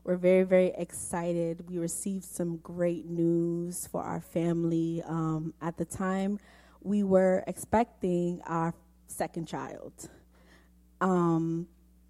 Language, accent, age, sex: English, American, 20-39, female